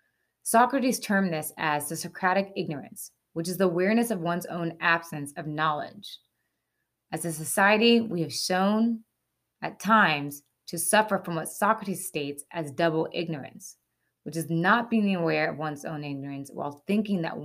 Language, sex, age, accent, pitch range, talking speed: English, female, 20-39, American, 155-210 Hz, 160 wpm